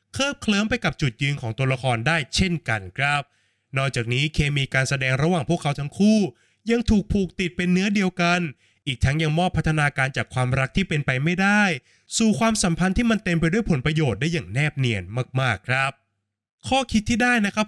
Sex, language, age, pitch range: male, Thai, 20-39, 130-180 Hz